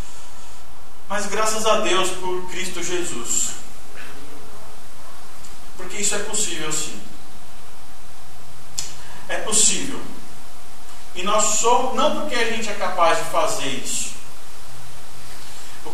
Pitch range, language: 180-220 Hz, Portuguese